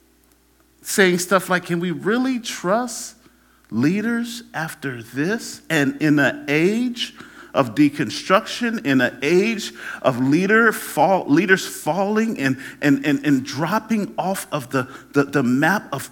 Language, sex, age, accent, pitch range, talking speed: English, male, 40-59, American, 145-220 Hz, 135 wpm